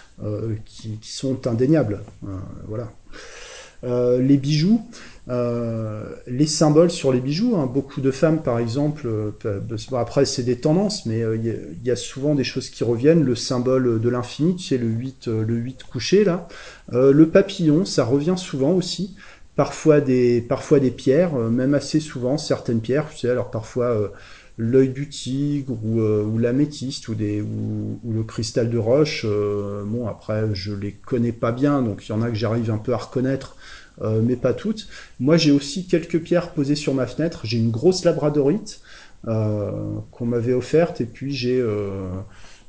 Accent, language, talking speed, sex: French, French, 190 wpm, male